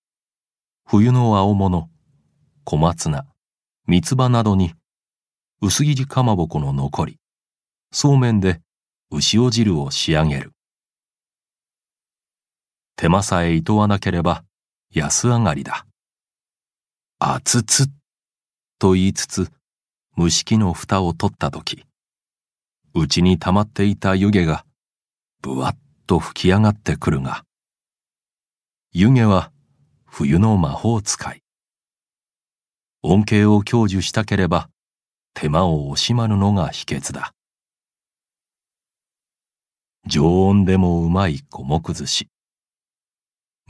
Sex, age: male, 40-59